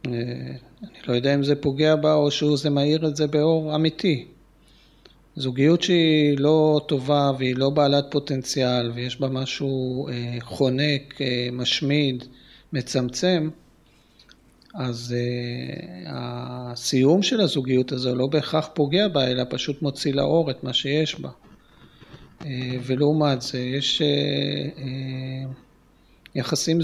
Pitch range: 130-155 Hz